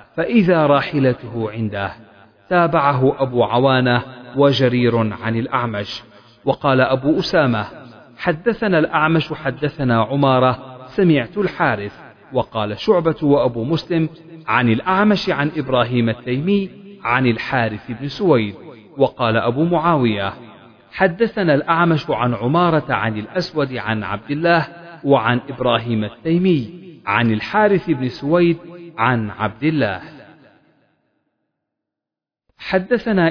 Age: 40-59